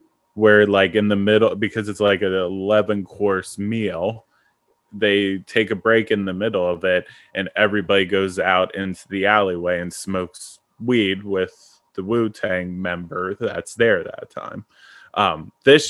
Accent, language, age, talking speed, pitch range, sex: American, English, 20-39, 150 wpm, 95-110 Hz, male